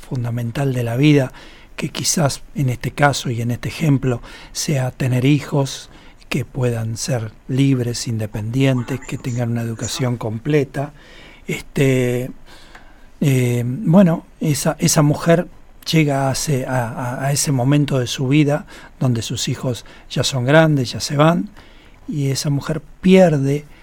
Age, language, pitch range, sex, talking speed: 60-79, Spanish, 125-150 Hz, male, 135 wpm